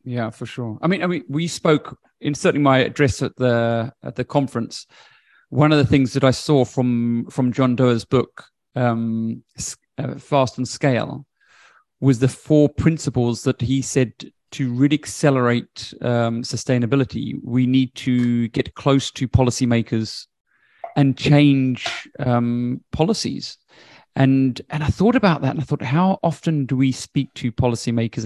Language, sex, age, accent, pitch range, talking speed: English, male, 30-49, British, 120-140 Hz, 155 wpm